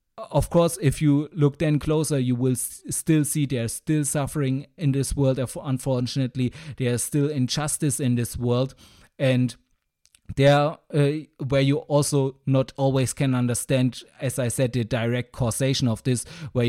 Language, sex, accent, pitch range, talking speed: English, male, German, 120-140 Hz, 160 wpm